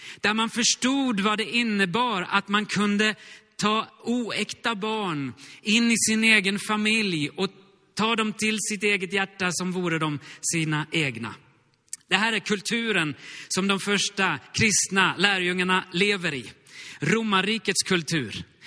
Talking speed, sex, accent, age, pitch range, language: 135 wpm, male, native, 30-49, 165-220 Hz, Swedish